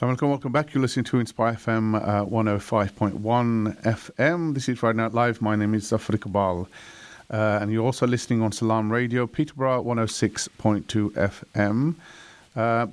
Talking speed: 155 wpm